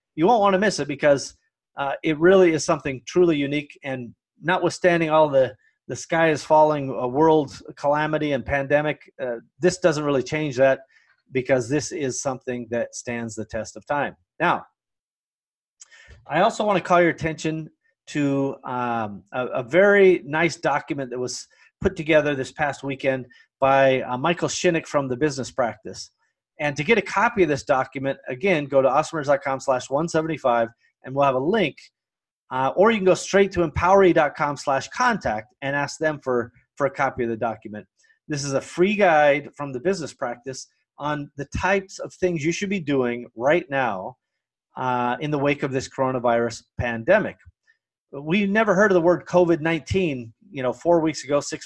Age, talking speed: 30-49, 180 wpm